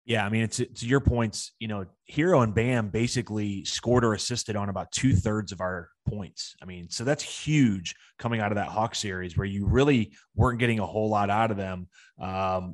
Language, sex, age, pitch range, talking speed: English, male, 30-49, 100-125 Hz, 215 wpm